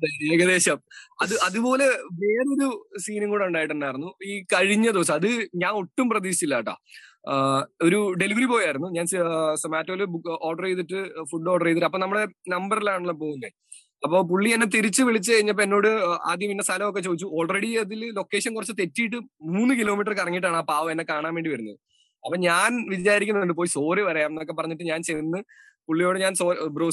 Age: 20-39